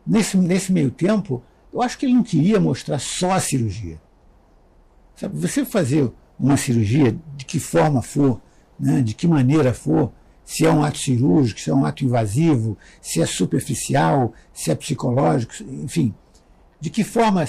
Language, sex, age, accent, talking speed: Portuguese, male, 60-79, Brazilian, 160 wpm